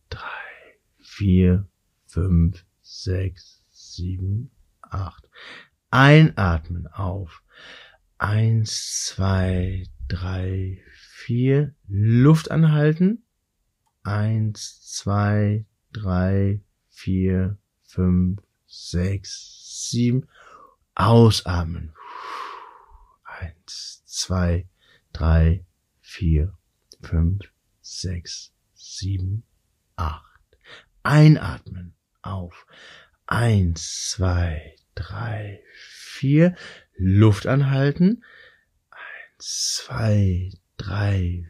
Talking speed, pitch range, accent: 60 wpm, 90-110 Hz, German